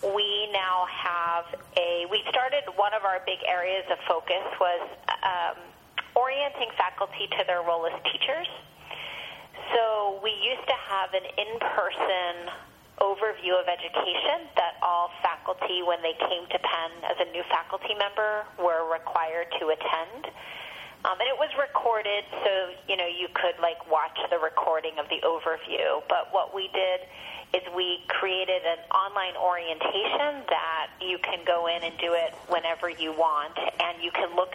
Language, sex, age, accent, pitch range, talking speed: English, female, 30-49, American, 170-200 Hz, 155 wpm